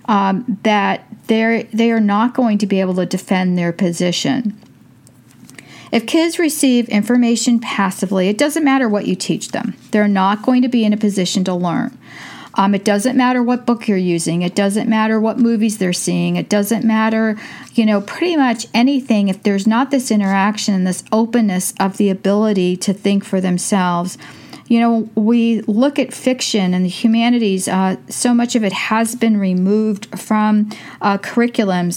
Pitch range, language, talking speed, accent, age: 195-235 Hz, English, 175 wpm, American, 40-59